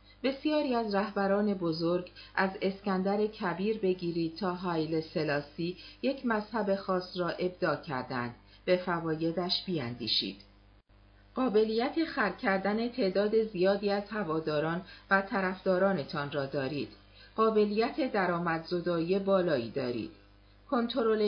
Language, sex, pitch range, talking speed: Persian, female, 150-200 Hz, 105 wpm